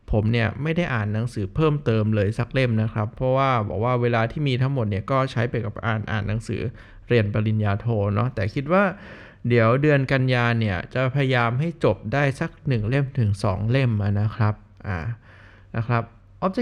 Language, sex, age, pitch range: Thai, male, 20-39, 110-140 Hz